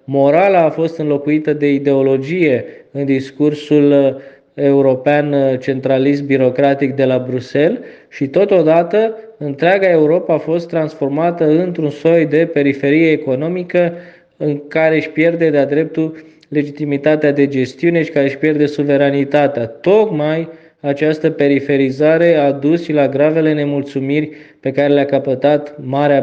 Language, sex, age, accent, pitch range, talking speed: Romanian, male, 20-39, native, 140-160 Hz, 120 wpm